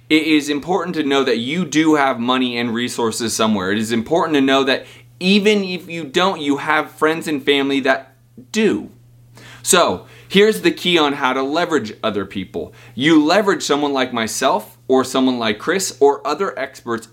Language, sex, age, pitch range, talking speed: English, male, 30-49, 115-155 Hz, 180 wpm